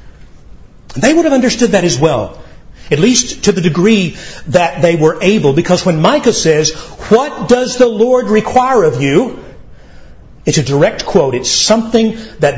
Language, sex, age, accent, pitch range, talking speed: English, male, 40-59, American, 140-195 Hz, 160 wpm